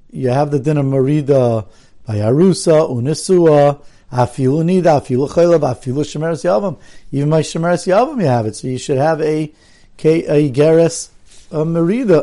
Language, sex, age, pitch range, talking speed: English, male, 50-69, 130-170 Hz, 140 wpm